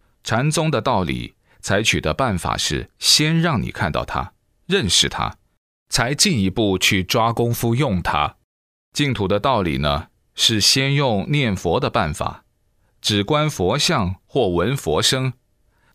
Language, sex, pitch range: Chinese, male, 90-130 Hz